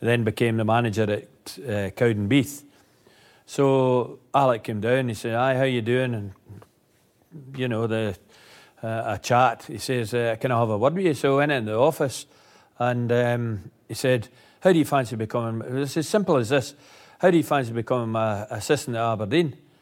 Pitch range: 115-135 Hz